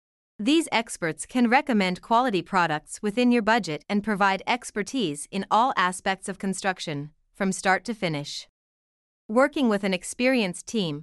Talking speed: 140 wpm